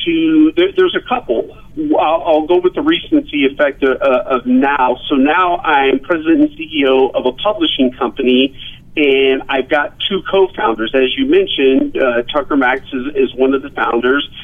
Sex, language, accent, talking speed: male, English, American, 165 wpm